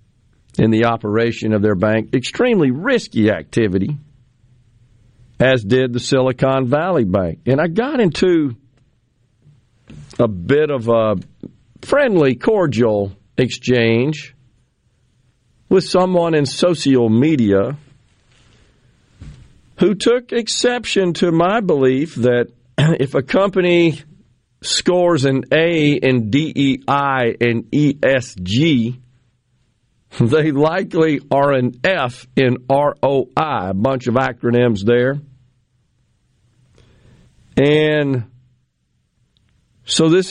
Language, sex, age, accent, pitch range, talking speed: English, male, 50-69, American, 115-145 Hz, 95 wpm